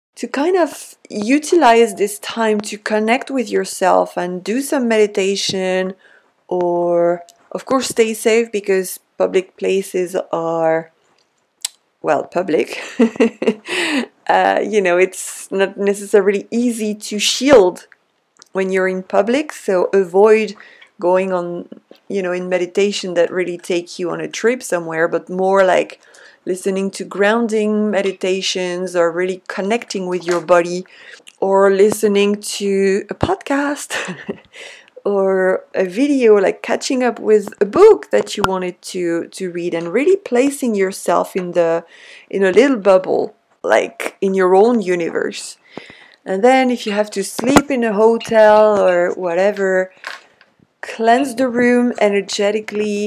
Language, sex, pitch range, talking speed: English, female, 185-225 Hz, 135 wpm